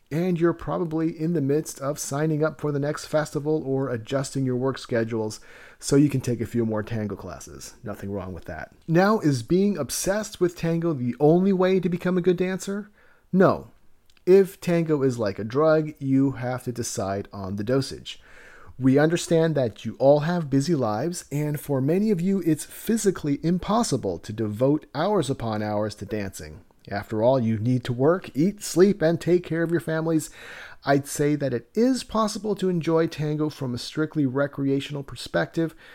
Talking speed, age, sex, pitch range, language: 185 wpm, 40-59, male, 125-170 Hz, English